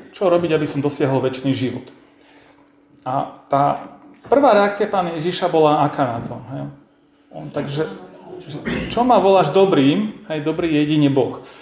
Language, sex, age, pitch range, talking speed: Slovak, male, 40-59, 140-175 Hz, 150 wpm